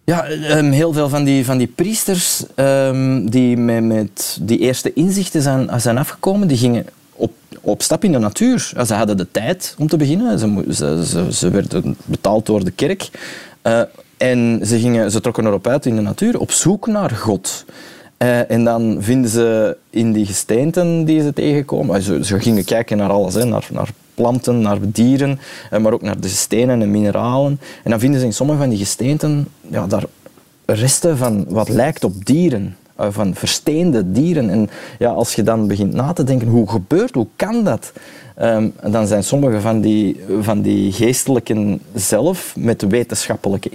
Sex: male